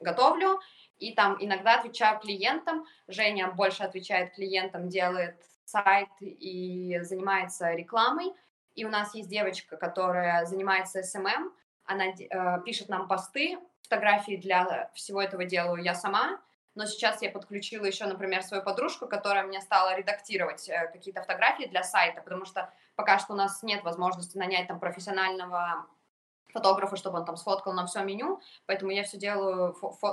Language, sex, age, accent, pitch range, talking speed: Russian, female, 20-39, native, 180-205 Hz, 150 wpm